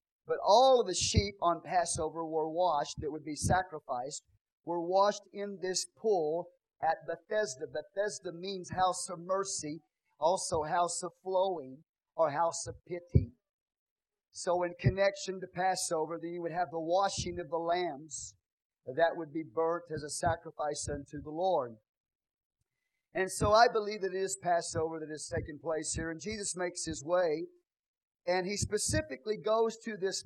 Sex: male